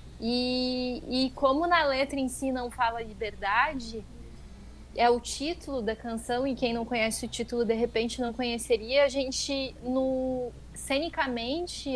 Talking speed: 140 wpm